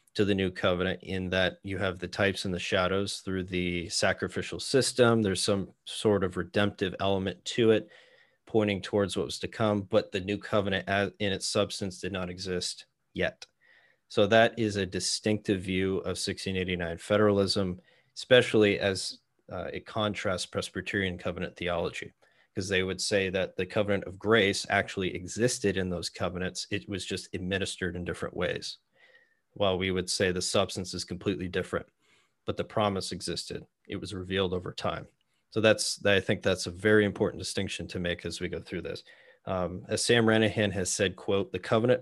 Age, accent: 30-49, American